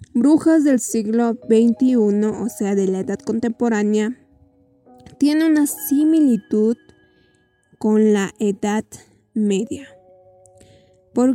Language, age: Spanish, 10-29